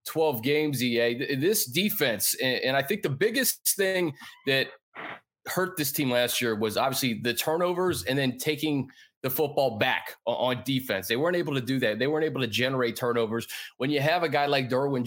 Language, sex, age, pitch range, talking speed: English, male, 30-49, 125-155 Hz, 190 wpm